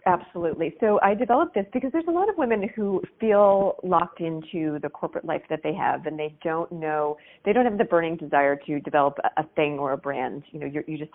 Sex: female